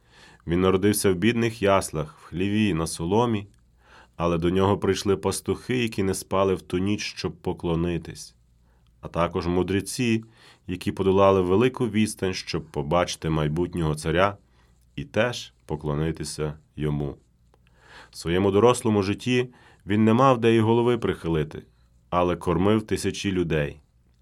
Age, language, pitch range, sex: 30-49, Ukrainian, 80-105 Hz, male